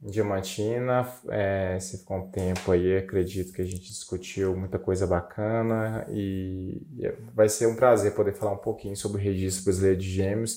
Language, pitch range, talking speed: Portuguese, 95-110 Hz, 180 wpm